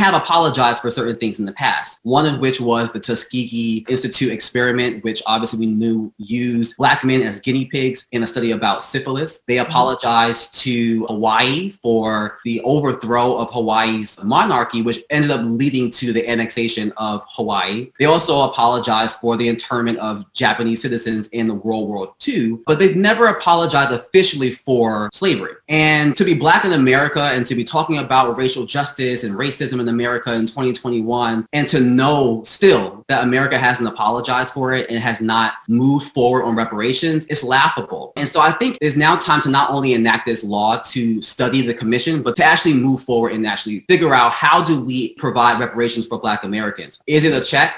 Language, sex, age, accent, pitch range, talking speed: English, male, 20-39, American, 115-135 Hz, 185 wpm